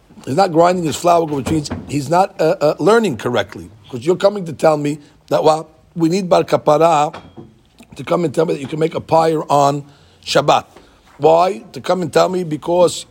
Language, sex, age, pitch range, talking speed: English, male, 50-69, 150-200 Hz, 200 wpm